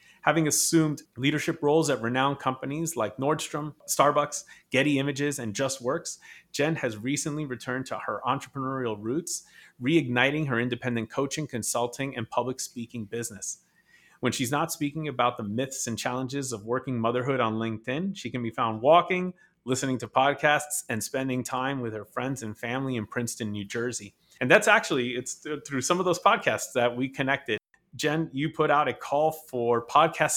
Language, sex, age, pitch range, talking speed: English, male, 30-49, 120-145 Hz, 170 wpm